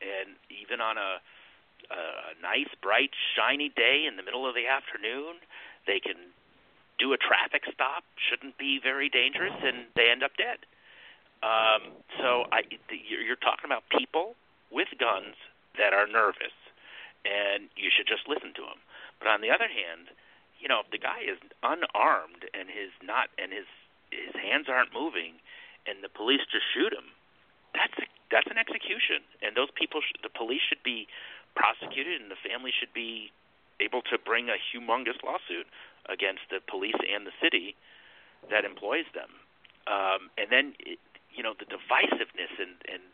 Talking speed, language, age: 170 wpm, English, 50-69